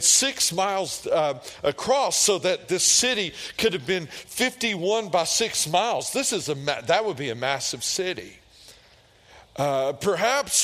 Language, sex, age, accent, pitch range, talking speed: English, male, 40-59, American, 165-225 Hz, 150 wpm